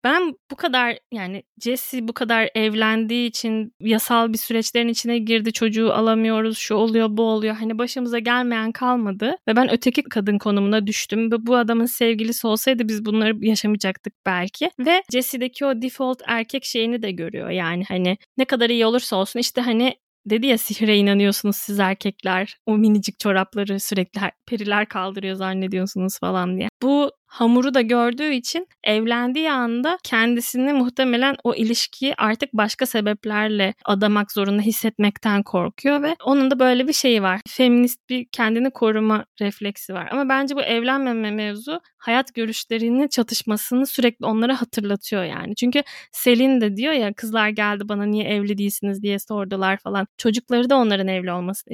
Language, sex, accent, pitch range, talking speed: Turkish, female, native, 210-255 Hz, 155 wpm